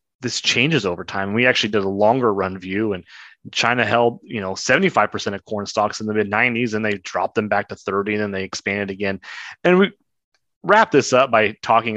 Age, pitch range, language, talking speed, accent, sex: 30-49, 105-130 Hz, English, 215 wpm, American, male